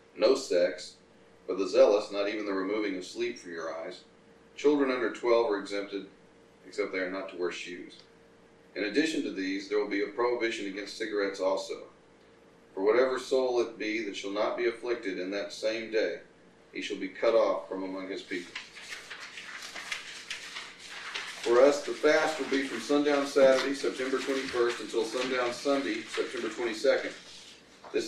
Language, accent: English, American